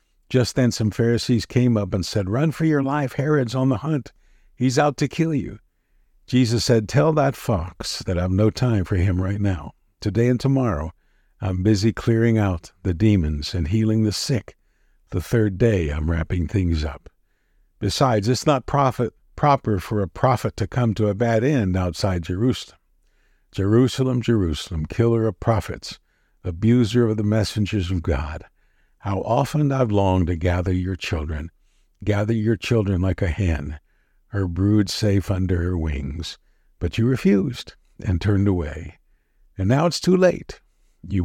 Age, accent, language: 60-79, American, English